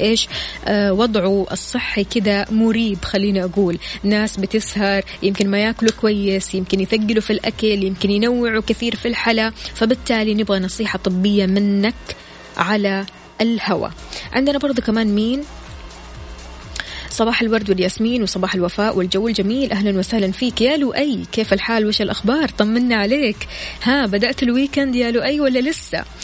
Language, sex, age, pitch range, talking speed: Arabic, female, 20-39, 190-230 Hz, 135 wpm